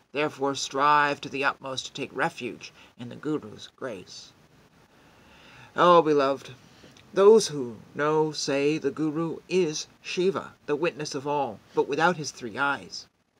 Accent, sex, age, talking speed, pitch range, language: American, male, 40-59, 140 wpm, 135-175 Hz, English